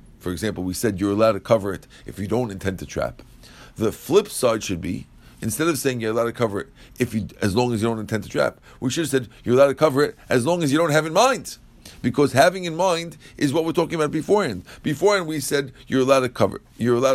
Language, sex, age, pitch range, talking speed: English, male, 50-69, 120-160 Hz, 260 wpm